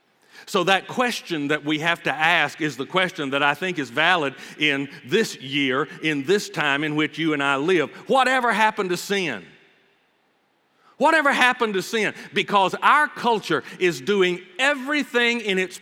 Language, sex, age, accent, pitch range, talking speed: English, male, 50-69, American, 150-195 Hz, 165 wpm